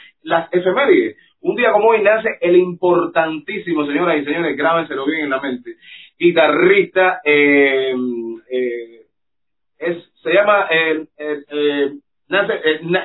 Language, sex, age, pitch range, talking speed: Spanish, male, 30-49, 145-190 Hz, 135 wpm